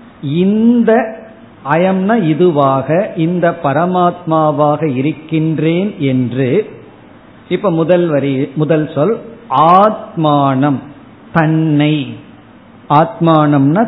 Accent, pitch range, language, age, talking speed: native, 145-190 Hz, Tamil, 50-69, 60 wpm